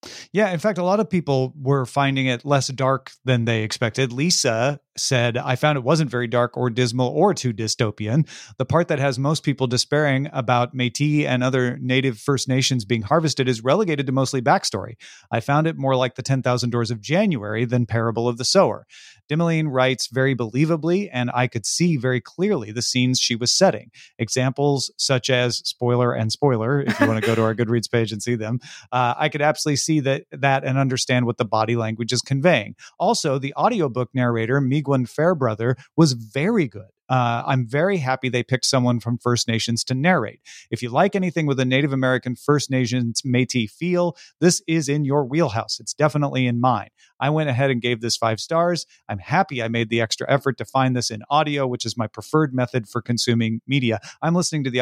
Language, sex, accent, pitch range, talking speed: English, male, American, 120-145 Hz, 200 wpm